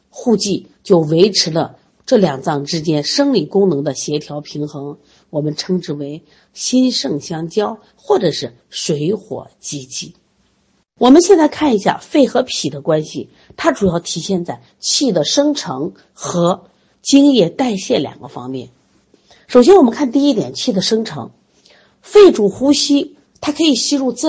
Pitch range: 155-255 Hz